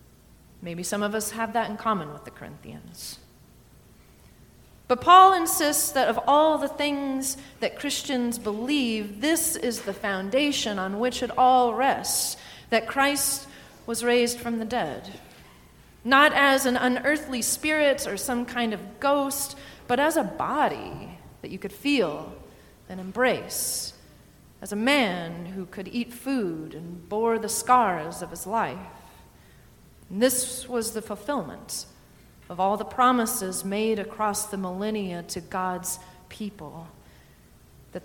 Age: 30-49